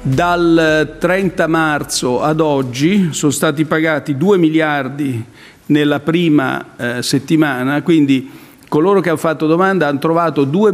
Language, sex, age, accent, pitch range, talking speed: Italian, male, 50-69, native, 140-165 Hz, 125 wpm